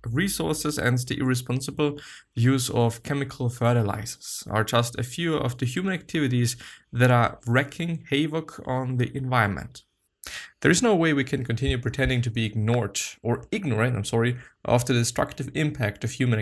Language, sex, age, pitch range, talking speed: English, male, 20-39, 115-145 Hz, 160 wpm